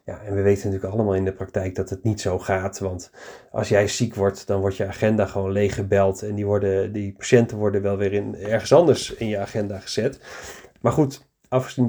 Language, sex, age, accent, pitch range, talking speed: Dutch, male, 40-59, Dutch, 100-135 Hz, 210 wpm